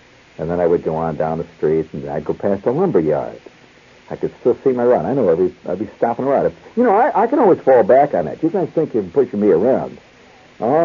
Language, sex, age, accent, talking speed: English, male, 60-79, American, 265 wpm